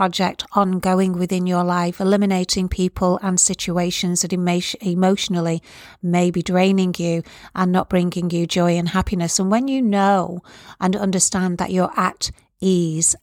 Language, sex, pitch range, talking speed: English, female, 175-200 Hz, 150 wpm